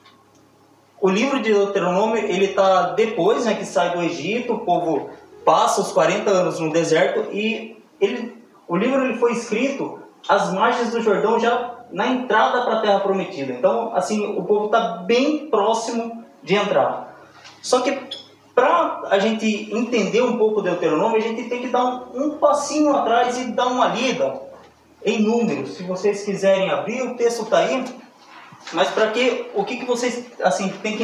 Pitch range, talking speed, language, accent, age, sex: 190-240 Hz, 170 wpm, Portuguese, Brazilian, 20-39, male